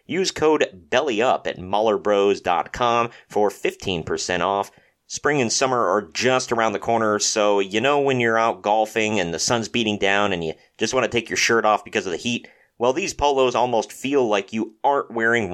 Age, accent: 40-59, American